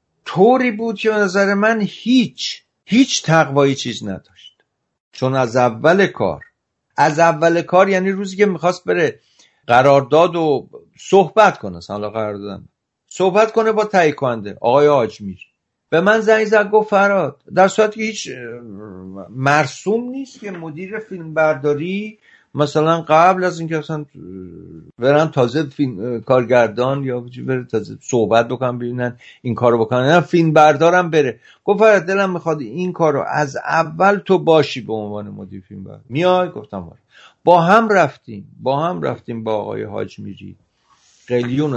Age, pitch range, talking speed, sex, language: 50-69, 125-195 Hz, 135 wpm, male, Persian